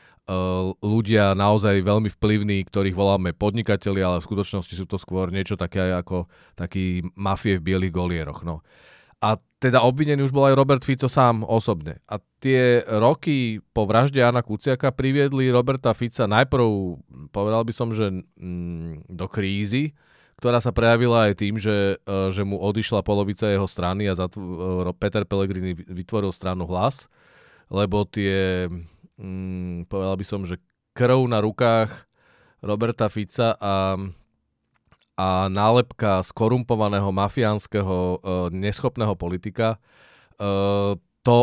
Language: Czech